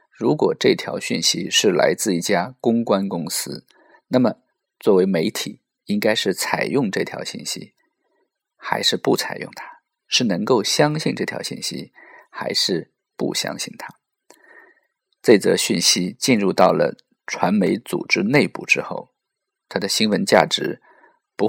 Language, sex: Chinese, male